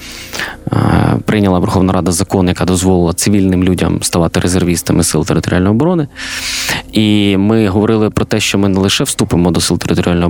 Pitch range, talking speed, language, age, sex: 90-110 Hz, 150 wpm, Ukrainian, 20-39, male